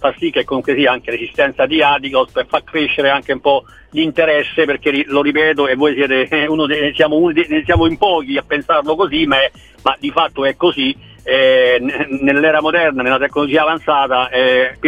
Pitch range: 130-160 Hz